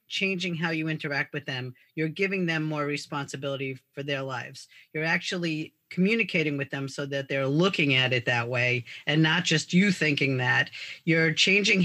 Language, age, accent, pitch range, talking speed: English, 40-59, American, 140-175 Hz, 175 wpm